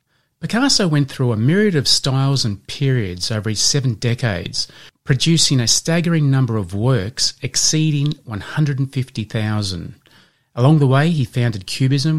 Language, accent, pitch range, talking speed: English, Australian, 115-145 Hz, 135 wpm